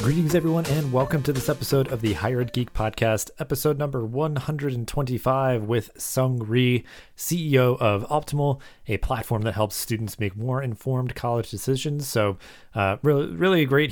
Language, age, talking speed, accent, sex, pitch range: English, 30-49, 165 wpm, American, male, 100-130 Hz